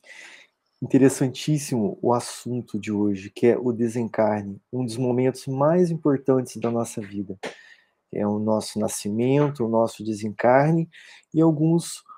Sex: male